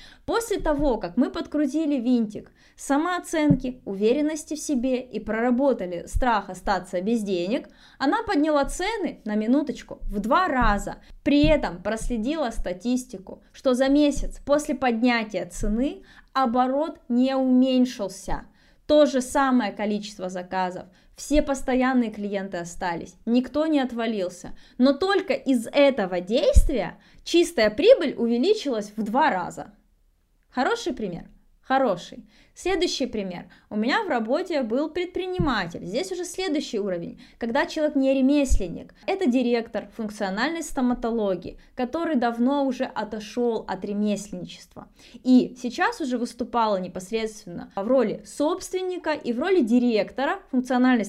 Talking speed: 120 wpm